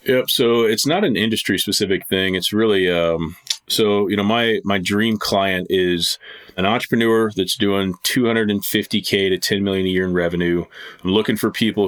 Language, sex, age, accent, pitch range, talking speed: English, male, 30-49, American, 90-110 Hz, 180 wpm